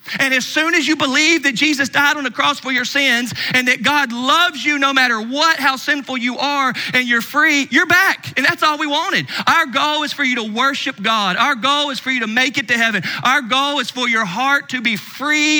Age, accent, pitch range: 40-59, American, 215-285 Hz